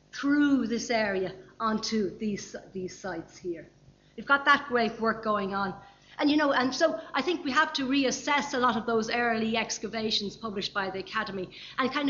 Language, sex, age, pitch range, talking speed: English, female, 60-79, 195-255 Hz, 195 wpm